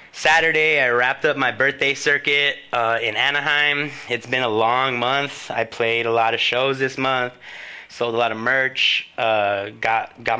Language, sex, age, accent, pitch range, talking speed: English, male, 20-39, American, 110-130 Hz, 180 wpm